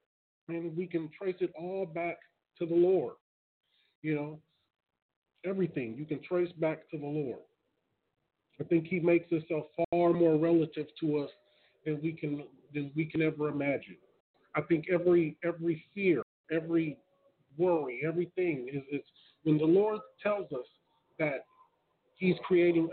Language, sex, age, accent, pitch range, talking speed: English, male, 40-59, American, 150-175 Hz, 145 wpm